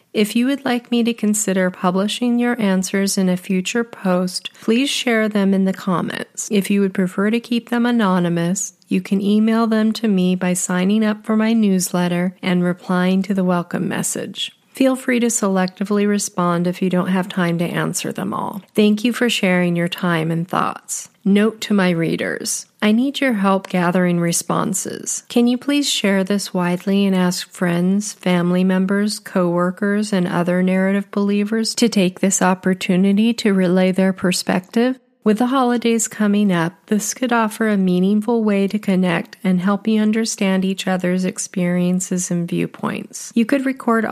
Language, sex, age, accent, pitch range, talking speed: English, female, 40-59, American, 180-220 Hz, 175 wpm